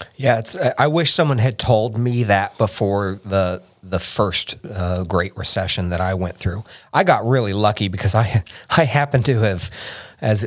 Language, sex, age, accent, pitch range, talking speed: English, male, 40-59, American, 95-120 Hz, 180 wpm